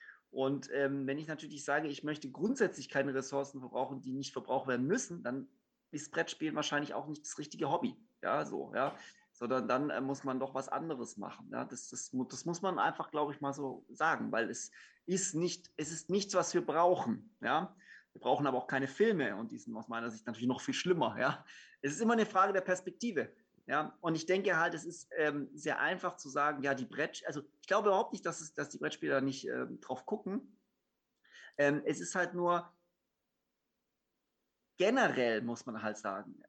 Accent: German